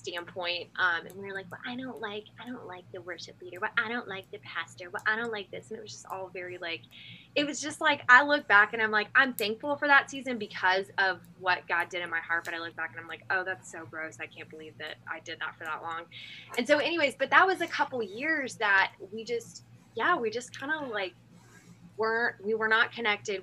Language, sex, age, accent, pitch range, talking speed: English, female, 20-39, American, 170-215 Hz, 260 wpm